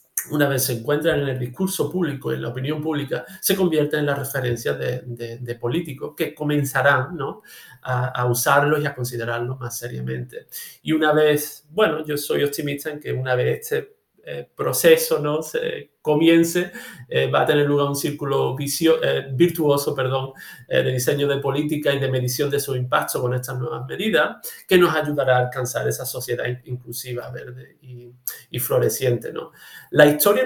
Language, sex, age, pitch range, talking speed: Spanish, male, 50-69, 125-165 Hz, 180 wpm